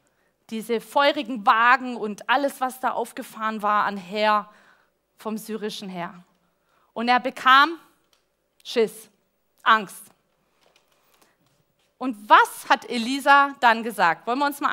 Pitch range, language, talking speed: 215-280 Hz, German, 120 wpm